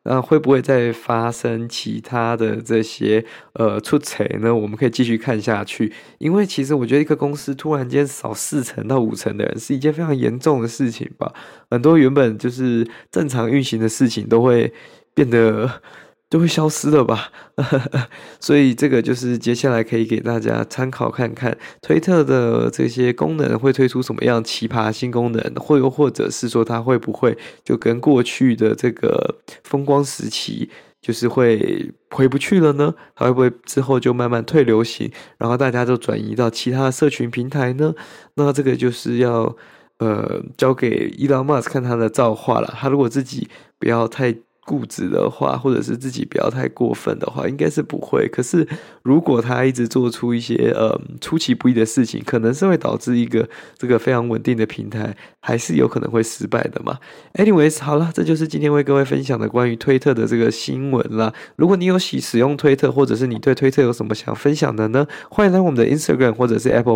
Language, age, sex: Chinese, 20-39, male